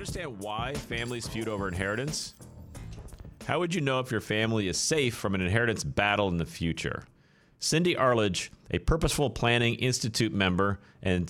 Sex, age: male, 40-59